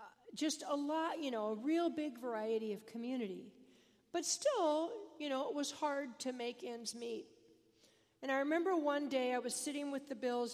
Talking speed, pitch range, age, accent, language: 190 wpm, 215-290 Hz, 50-69, American, English